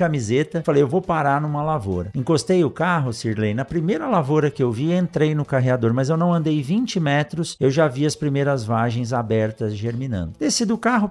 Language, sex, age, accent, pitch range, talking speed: Portuguese, male, 50-69, Brazilian, 125-175 Hz, 200 wpm